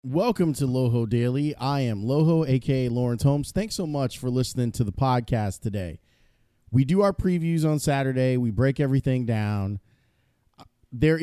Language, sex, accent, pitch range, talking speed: English, male, American, 115-145 Hz, 160 wpm